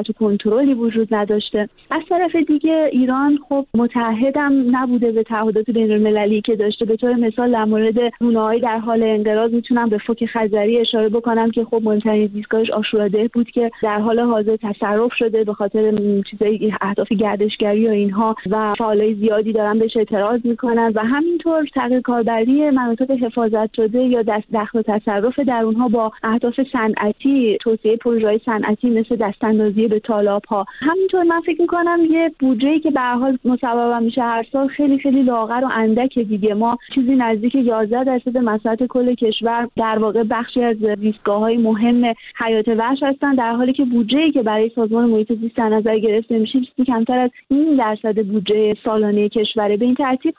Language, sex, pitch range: Persian, female, 220-250 Hz